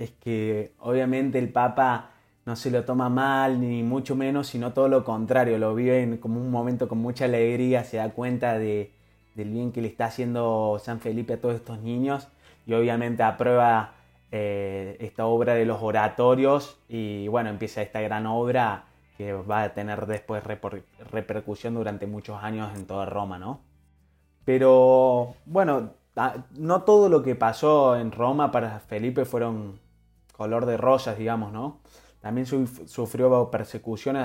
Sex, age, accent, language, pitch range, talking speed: male, 20-39, Argentinian, Spanish, 110-125 Hz, 160 wpm